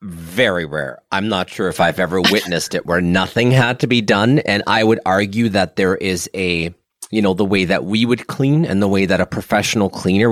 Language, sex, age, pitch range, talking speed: English, male, 30-49, 100-130 Hz, 225 wpm